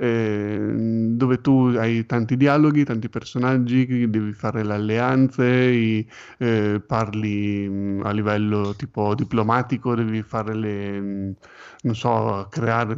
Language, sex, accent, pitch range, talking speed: Italian, male, native, 110-140 Hz, 110 wpm